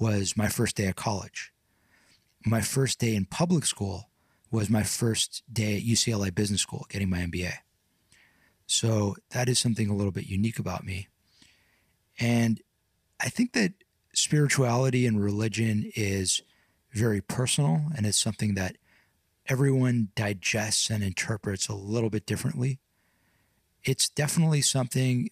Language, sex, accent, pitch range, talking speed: English, male, American, 100-125 Hz, 135 wpm